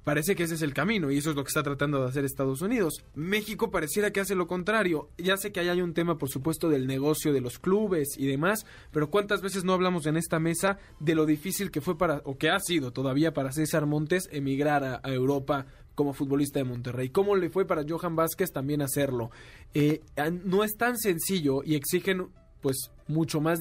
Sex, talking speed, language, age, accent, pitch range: male, 220 wpm, Spanish, 20-39, Mexican, 130-165 Hz